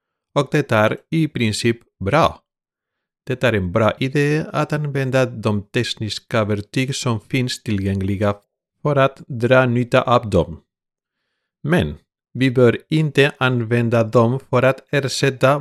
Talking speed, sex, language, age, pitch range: 130 wpm, male, Swedish, 40-59, 115-135 Hz